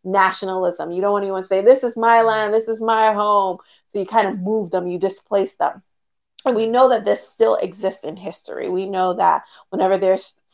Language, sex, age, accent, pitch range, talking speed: English, female, 30-49, American, 190-250 Hz, 215 wpm